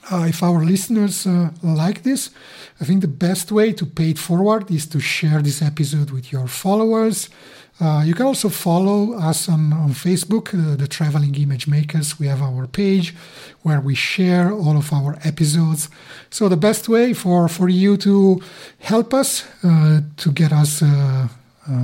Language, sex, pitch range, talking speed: English, male, 150-195 Hz, 180 wpm